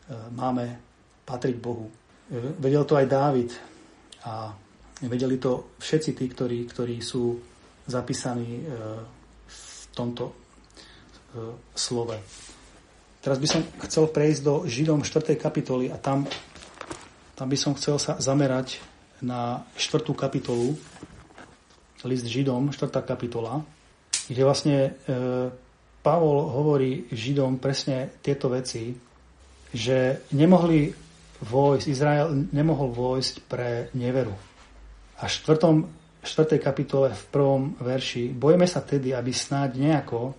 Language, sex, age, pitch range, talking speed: Slovak, male, 30-49, 120-145 Hz, 110 wpm